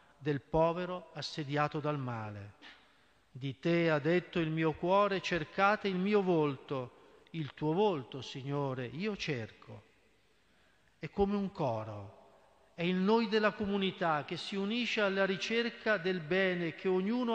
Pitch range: 140-185 Hz